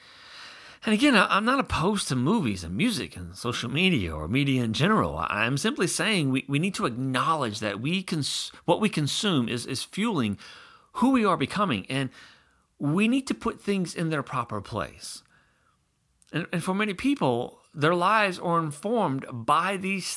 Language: English